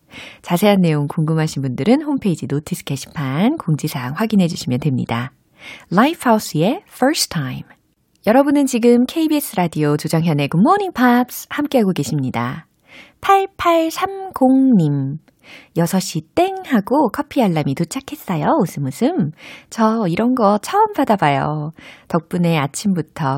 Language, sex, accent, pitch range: Korean, female, native, 150-240 Hz